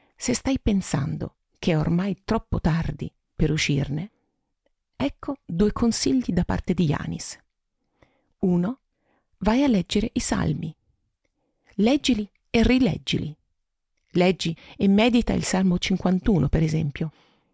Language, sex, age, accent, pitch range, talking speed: Italian, female, 40-59, native, 160-215 Hz, 115 wpm